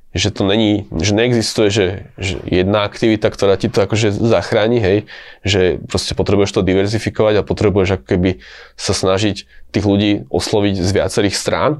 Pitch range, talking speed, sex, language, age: 95-105 Hz, 165 wpm, male, Slovak, 20-39